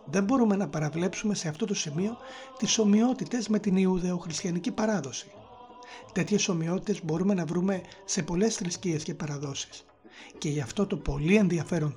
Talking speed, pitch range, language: 150 wpm, 170-215 Hz, Greek